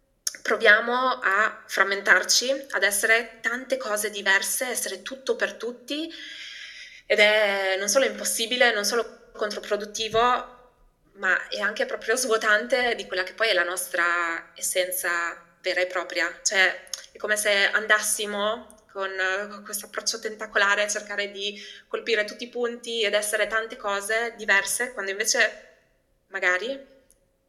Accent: native